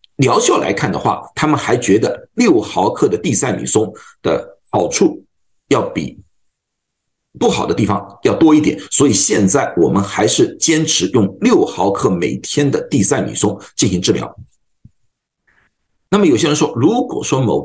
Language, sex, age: Chinese, male, 50-69